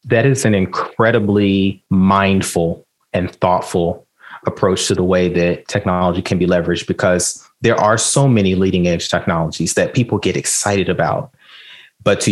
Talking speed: 150 wpm